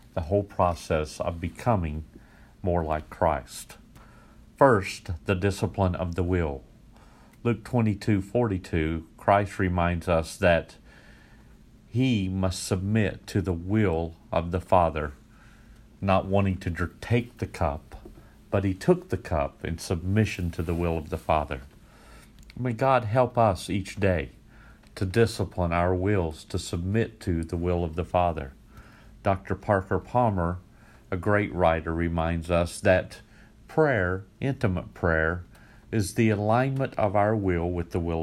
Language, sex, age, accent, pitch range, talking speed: English, male, 50-69, American, 85-110 Hz, 135 wpm